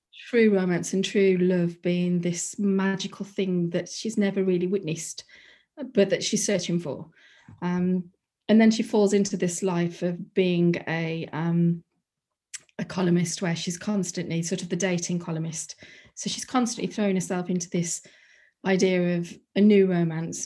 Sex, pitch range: female, 180-205 Hz